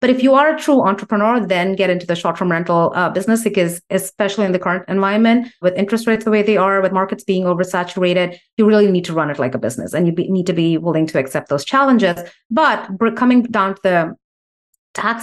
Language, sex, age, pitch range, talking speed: English, female, 30-49, 175-215 Hz, 235 wpm